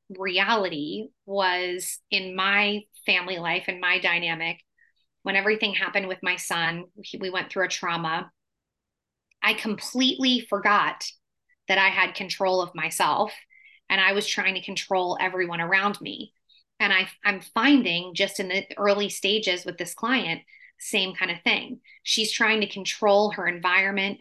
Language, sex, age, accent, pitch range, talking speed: English, female, 30-49, American, 180-210 Hz, 150 wpm